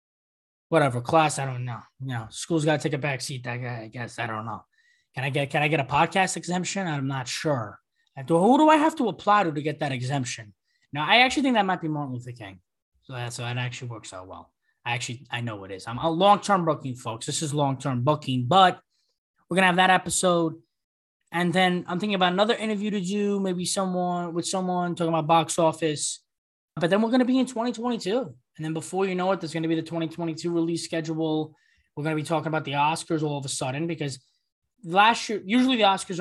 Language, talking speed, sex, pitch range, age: English, 230 wpm, male, 130-185 Hz, 20-39